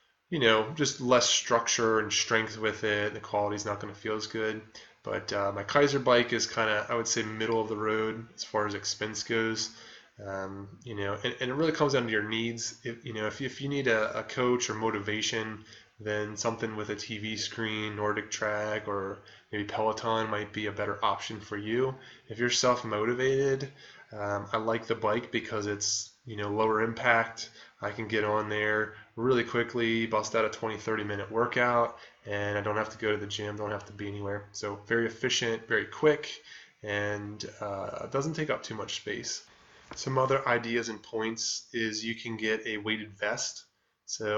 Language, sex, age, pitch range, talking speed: English, male, 20-39, 105-120 Hz, 200 wpm